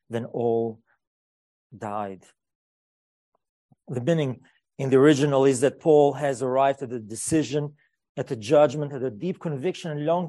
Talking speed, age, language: 145 wpm, 40-59, English